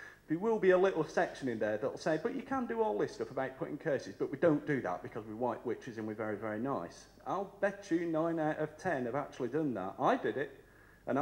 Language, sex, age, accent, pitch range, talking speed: English, male, 40-59, British, 145-200 Hz, 265 wpm